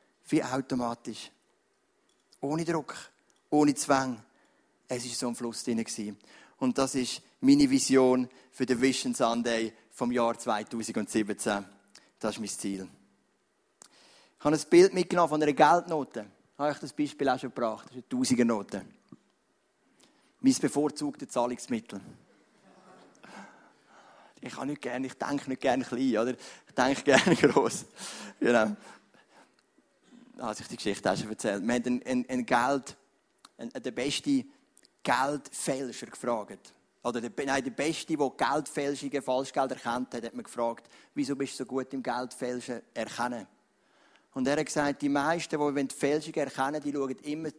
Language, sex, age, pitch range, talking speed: English, male, 30-49, 120-150 Hz, 145 wpm